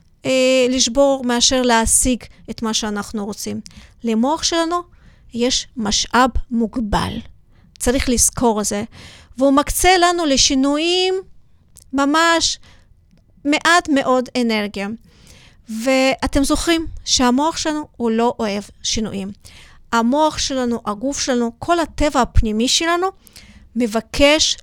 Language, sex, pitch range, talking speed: Hebrew, female, 220-290 Hz, 100 wpm